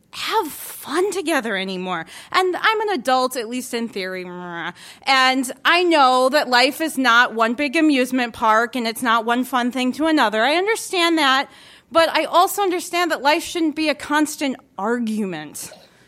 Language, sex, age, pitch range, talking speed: English, female, 20-39, 200-265 Hz, 170 wpm